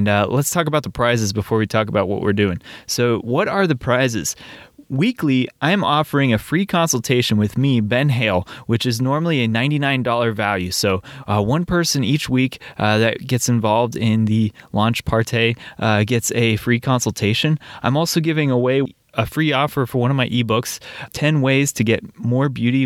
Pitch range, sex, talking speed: 110-135 Hz, male, 185 wpm